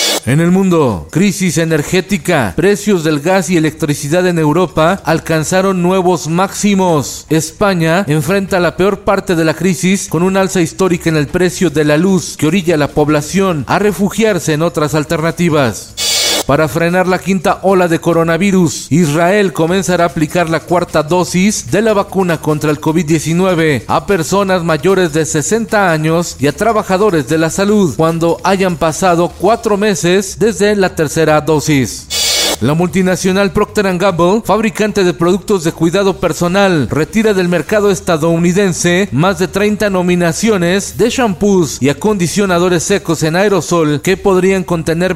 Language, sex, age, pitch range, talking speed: Spanish, male, 40-59, 160-195 Hz, 150 wpm